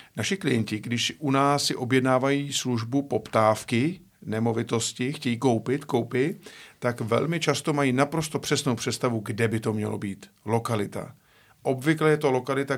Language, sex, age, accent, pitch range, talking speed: Czech, male, 50-69, native, 115-145 Hz, 140 wpm